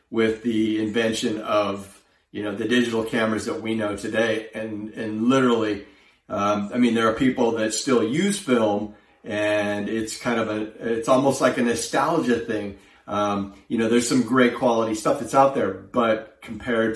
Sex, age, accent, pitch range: male, 40-59, American, 100-115 Hz